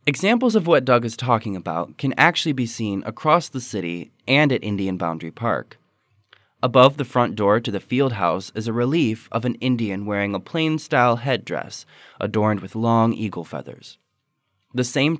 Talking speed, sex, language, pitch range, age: 175 wpm, male, English, 100-135 Hz, 20-39